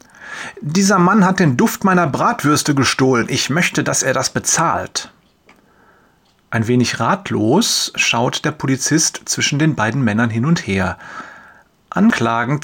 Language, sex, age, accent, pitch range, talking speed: German, male, 30-49, German, 125-165 Hz, 135 wpm